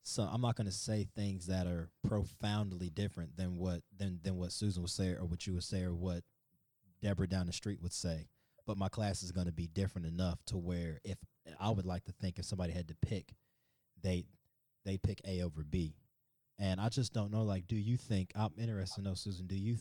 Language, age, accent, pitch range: English, 20-39, American, 90-110 Hz